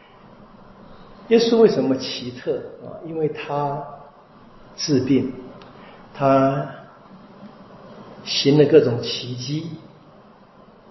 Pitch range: 130-200 Hz